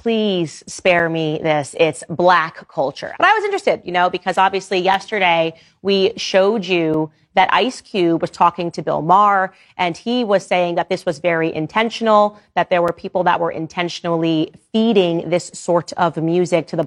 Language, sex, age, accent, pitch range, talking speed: English, female, 30-49, American, 160-195 Hz, 180 wpm